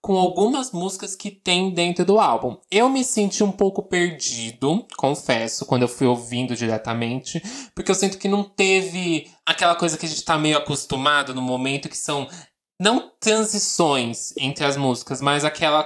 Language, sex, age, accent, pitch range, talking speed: Portuguese, male, 20-39, Brazilian, 135-180 Hz, 170 wpm